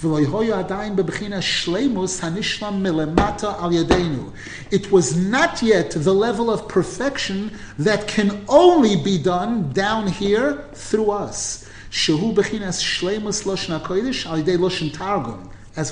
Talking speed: 70 wpm